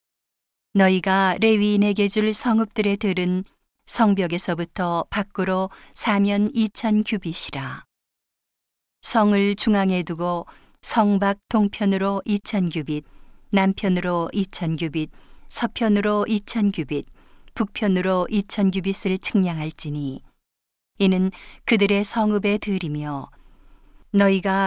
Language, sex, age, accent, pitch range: Korean, female, 40-59, native, 175-210 Hz